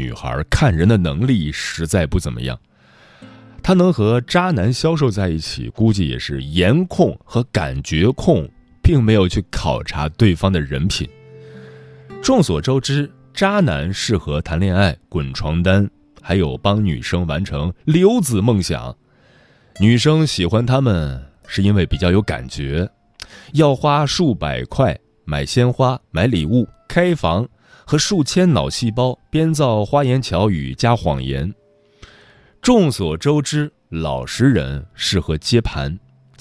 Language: Chinese